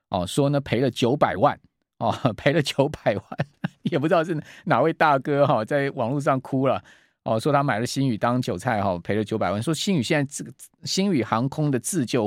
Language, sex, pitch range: Chinese, male, 115-150 Hz